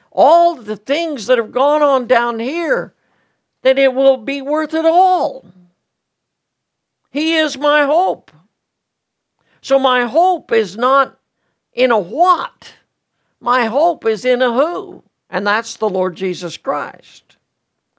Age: 60-79